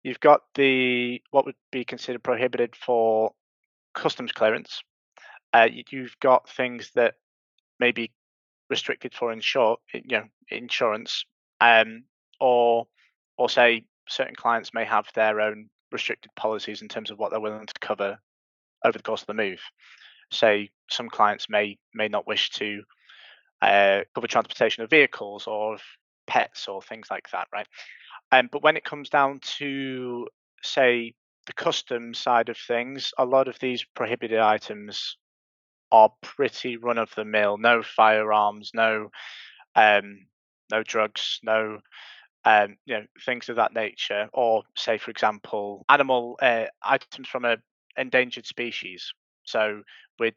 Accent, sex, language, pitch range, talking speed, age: British, male, English, 105-125 Hz, 145 wpm, 20-39